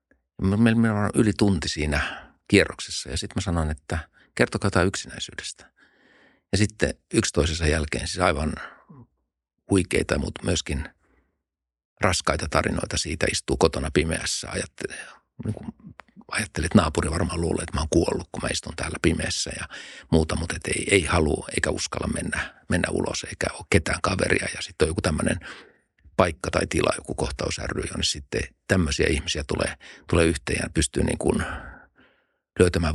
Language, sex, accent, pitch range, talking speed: Finnish, male, native, 80-95 Hz, 150 wpm